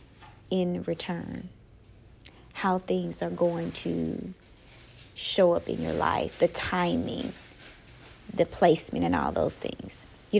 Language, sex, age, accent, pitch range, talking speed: English, female, 30-49, American, 170-225 Hz, 120 wpm